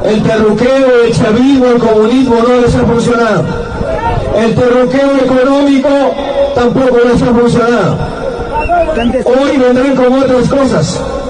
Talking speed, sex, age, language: 115 wpm, male, 40-59, Spanish